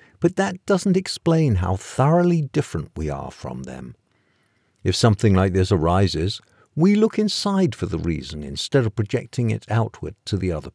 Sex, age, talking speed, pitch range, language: male, 50-69, 165 wpm, 95-135 Hz, English